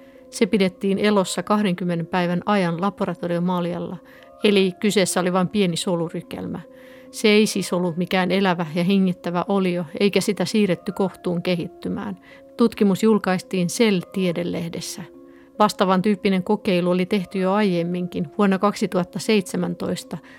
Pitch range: 175-215 Hz